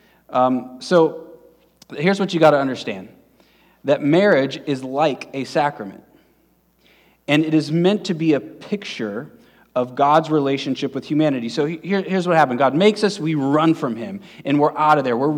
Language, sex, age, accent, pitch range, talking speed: English, male, 30-49, American, 140-175 Hz, 180 wpm